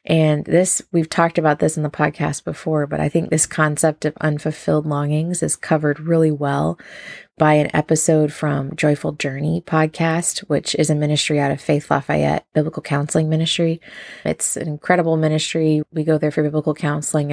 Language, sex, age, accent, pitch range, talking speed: English, female, 20-39, American, 150-165 Hz, 175 wpm